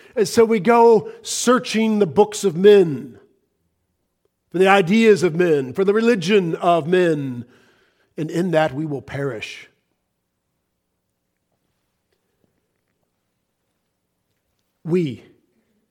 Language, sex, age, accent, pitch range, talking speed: English, male, 50-69, American, 155-225 Hz, 100 wpm